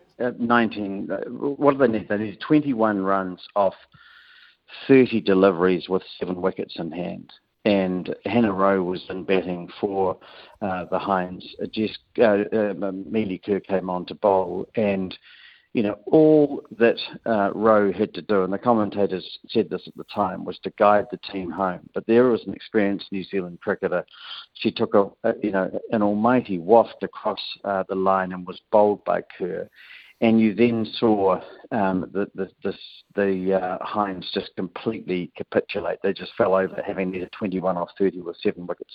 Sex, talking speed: male, 180 wpm